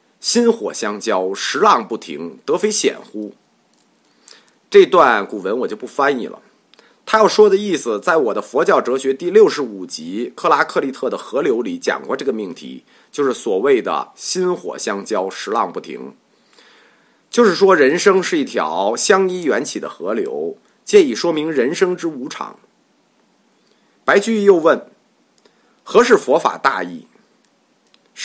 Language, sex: Chinese, male